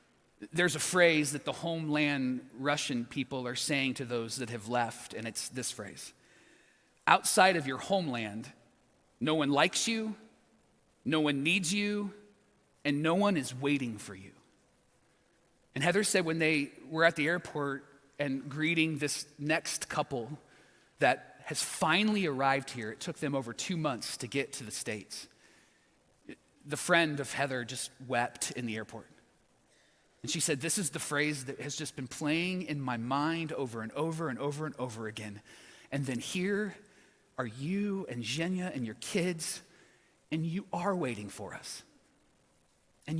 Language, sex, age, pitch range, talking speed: English, male, 30-49, 130-175 Hz, 165 wpm